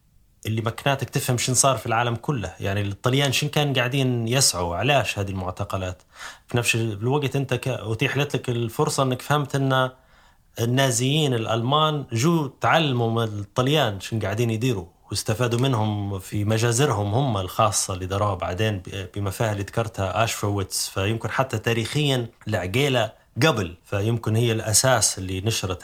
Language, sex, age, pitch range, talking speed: Arabic, male, 20-39, 105-135 Hz, 135 wpm